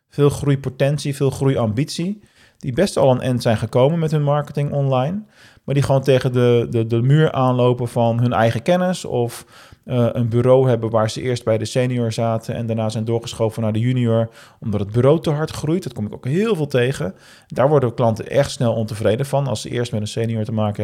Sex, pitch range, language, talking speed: male, 115-140 Hz, Dutch, 215 wpm